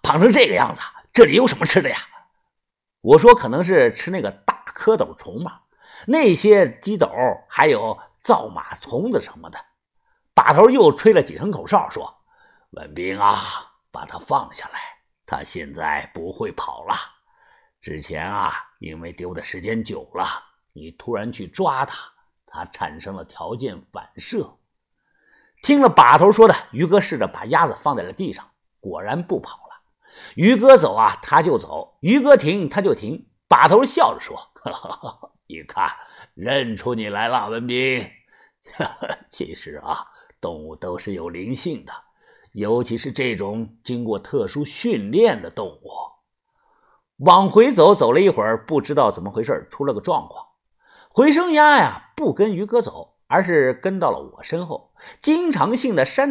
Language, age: Chinese, 50-69